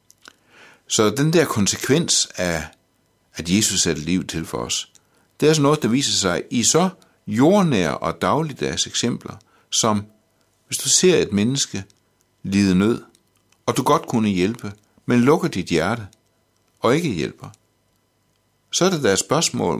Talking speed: 155 wpm